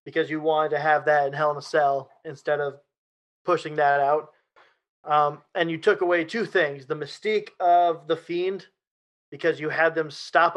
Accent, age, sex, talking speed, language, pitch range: American, 20-39, male, 185 wpm, English, 150-190 Hz